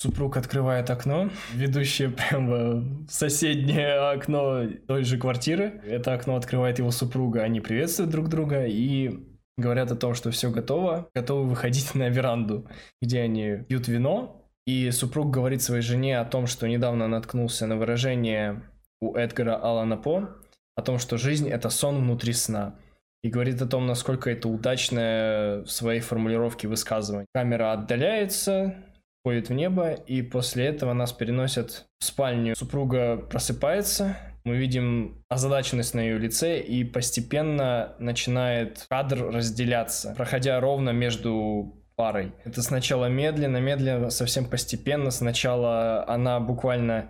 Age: 20-39